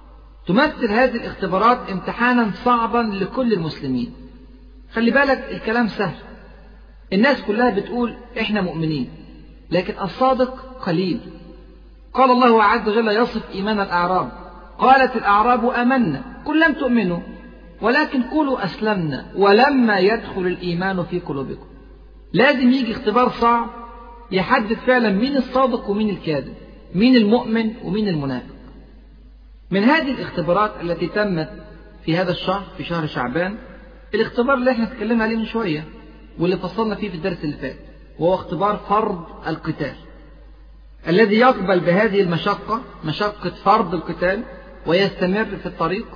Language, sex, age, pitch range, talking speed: Arabic, male, 50-69, 180-235 Hz, 120 wpm